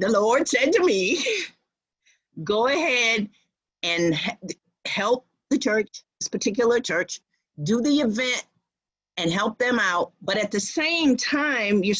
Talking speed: 135 wpm